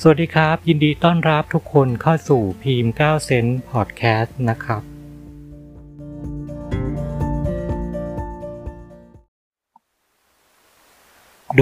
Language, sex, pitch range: Thai, male, 100-135 Hz